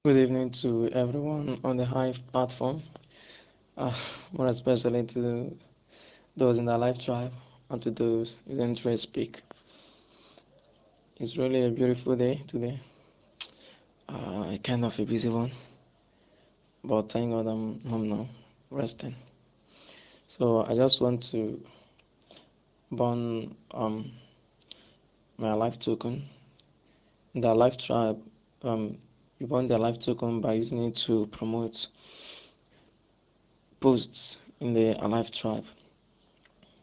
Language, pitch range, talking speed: English, 110-125 Hz, 115 wpm